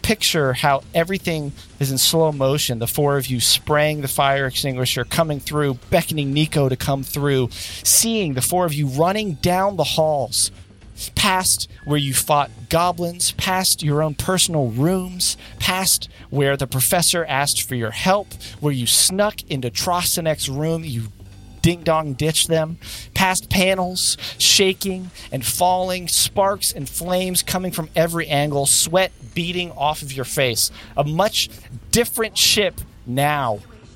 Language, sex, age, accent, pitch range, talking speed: English, male, 40-59, American, 120-175 Hz, 145 wpm